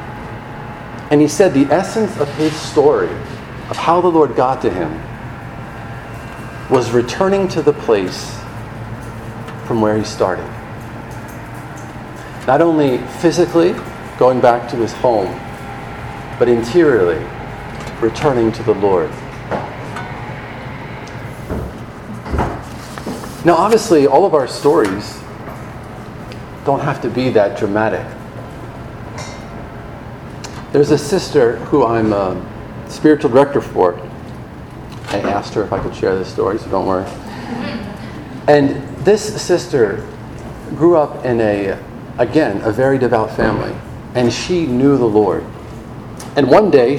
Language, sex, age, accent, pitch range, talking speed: English, male, 40-59, American, 115-145 Hz, 115 wpm